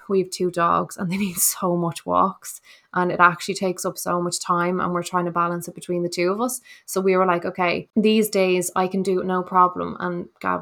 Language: English